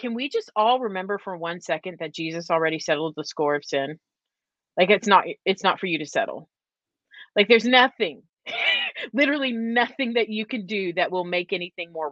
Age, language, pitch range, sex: 30-49, English, 175-235 Hz, female